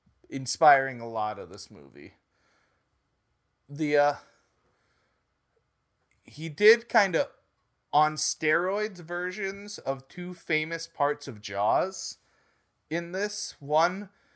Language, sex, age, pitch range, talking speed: English, male, 30-49, 120-155 Hz, 100 wpm